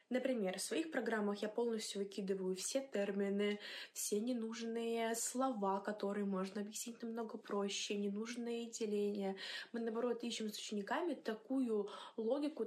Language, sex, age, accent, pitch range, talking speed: Russian, female, 20-39, native, 195-235 Hz, 125 wpm